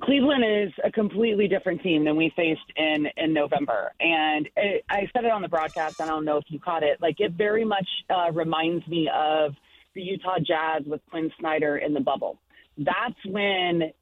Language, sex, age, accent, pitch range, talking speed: English, female, 30-49, American, 160-200 Hz, 195 wpm